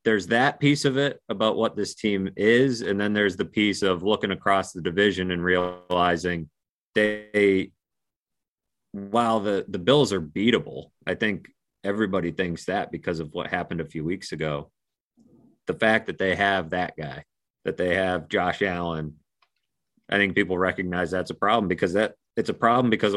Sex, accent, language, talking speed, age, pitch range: male, American, English, 175 wpm, 30-49, 85-105 Hz